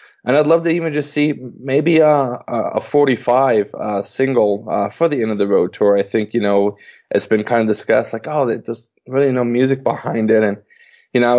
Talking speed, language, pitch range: 220 wpm, English, 105-125 Hz